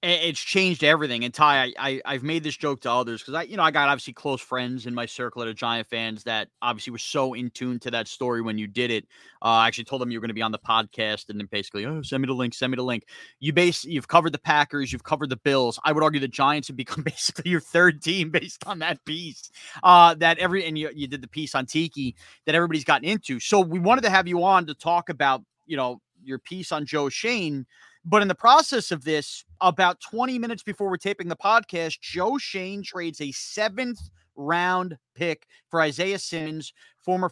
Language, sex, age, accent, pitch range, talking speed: English, male, 30-49, American, 135-180 Hz, 240 wpm